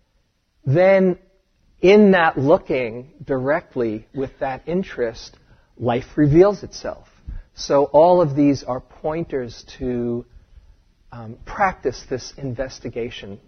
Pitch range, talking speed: 120-160 Hz, 100 wpm